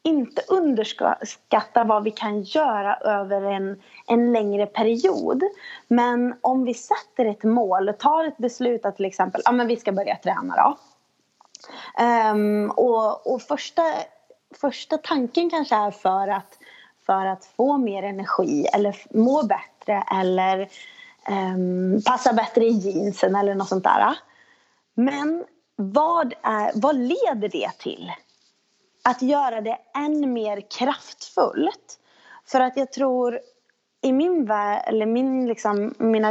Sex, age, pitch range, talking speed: female, 30-49, 200-265 Hz, 135 wpm